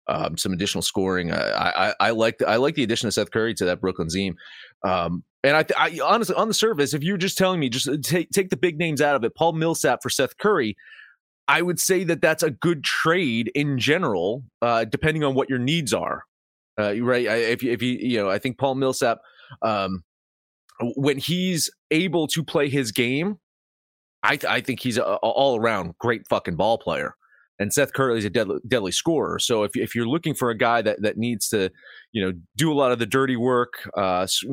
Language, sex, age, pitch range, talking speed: English, male, 30-49, 105-150 Hz, 220 wpm